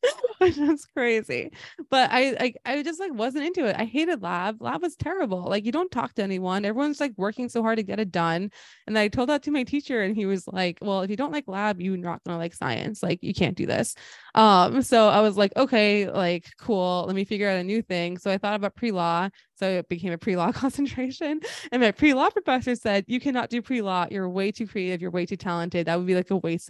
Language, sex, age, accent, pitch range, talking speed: English, female, 20-39, American, 185-255 Hz, 250 wpm